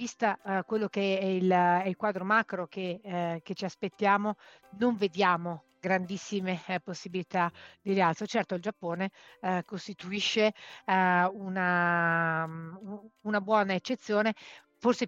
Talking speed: 130 wpm